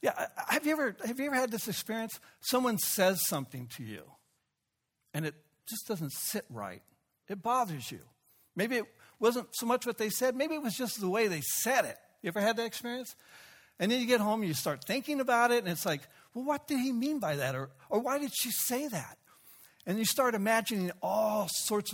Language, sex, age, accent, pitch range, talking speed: English, male, 60-79, American, 140-220 Hz, 220 wpm